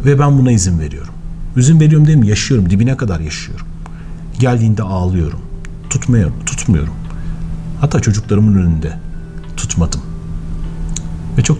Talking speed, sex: 120 wpm, male